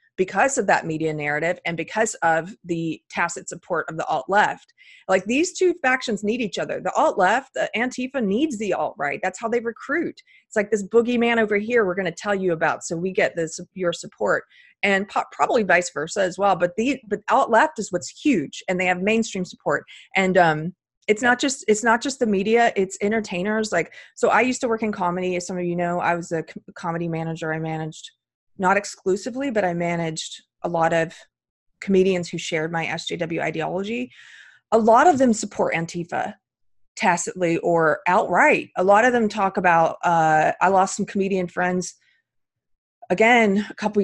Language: English